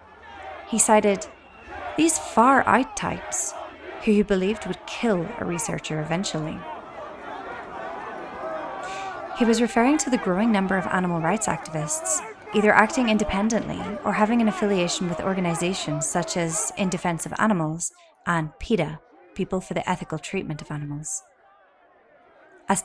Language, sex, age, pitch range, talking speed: English, female, 20-39, 165-215 Hz, 130 wpm